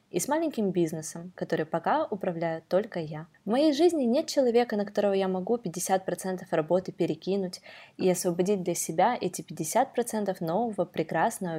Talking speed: 150 wpm